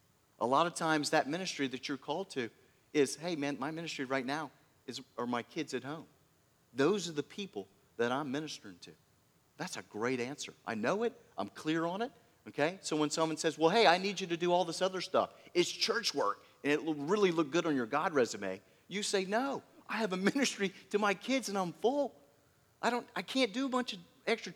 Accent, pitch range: American, 145-220 Hz